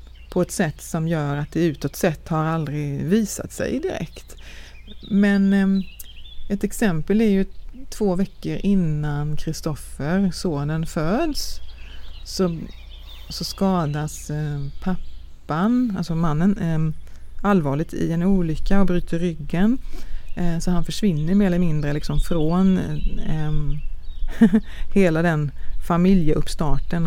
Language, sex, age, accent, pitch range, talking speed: Swedish, female, 30-49, native, 150-185 Hz, 120 wpm